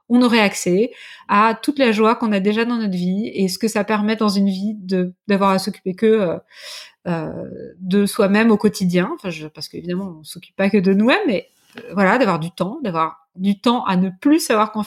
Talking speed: 235 wpm